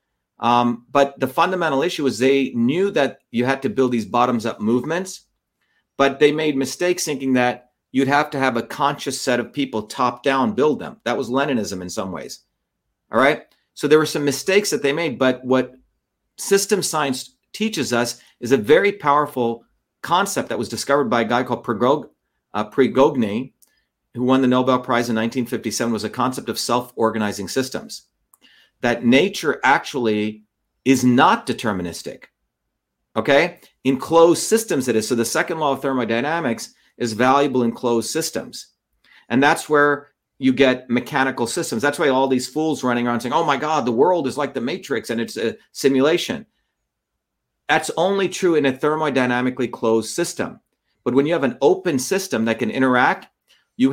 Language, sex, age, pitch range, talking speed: English, male, 50-69, 120-145 Hz, 170 wpm